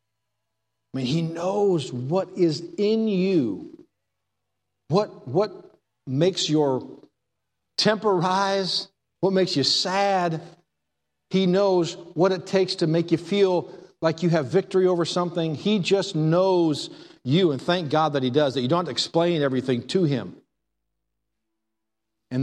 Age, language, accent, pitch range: 50-69, English, American, 130-180 Hz